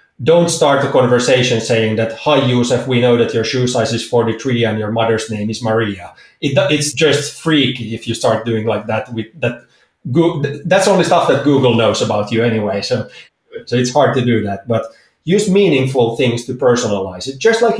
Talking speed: 200 wpm